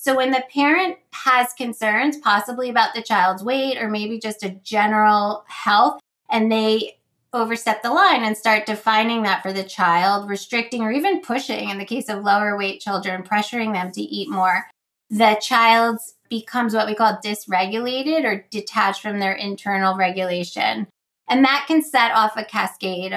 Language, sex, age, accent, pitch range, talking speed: English, female, 20-39, American, 200-235 Hz, 170 wpm